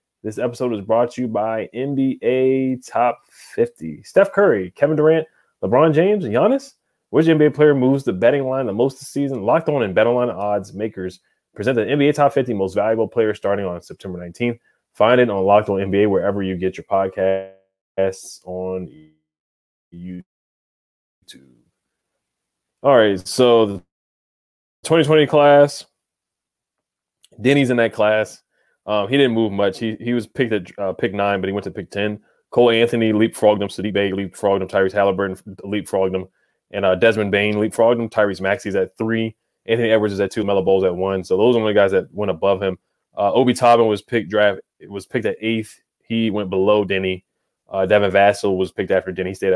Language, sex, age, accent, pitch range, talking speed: English, male, 20-39, American, 95-120 Hz, 185 wpm